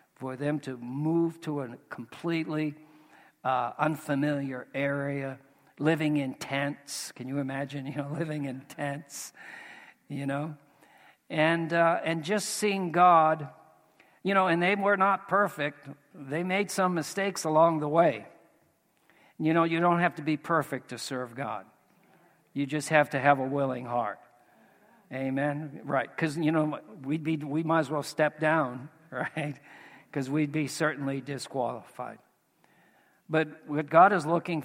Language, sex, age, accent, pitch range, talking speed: English, male, 60-79, American, 140-160 Hz, 150 wpm